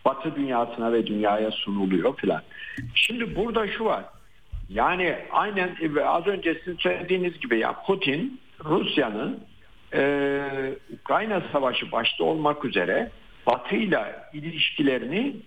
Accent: native